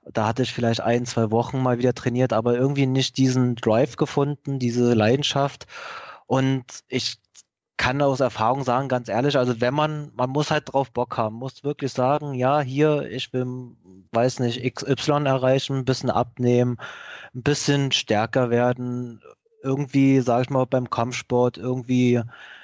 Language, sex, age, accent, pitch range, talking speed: German, male, 20-39, German, 115-130 Hz, 160 wpm